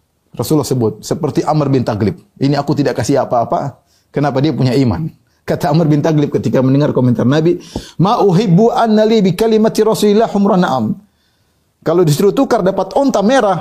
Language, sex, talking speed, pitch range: Indonesian, male, 155 wpm, 120-175 Hz